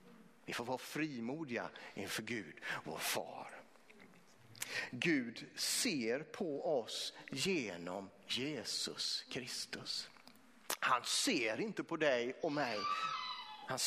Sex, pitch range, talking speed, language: male, 145-230 Hz, 95 wpm, Swedish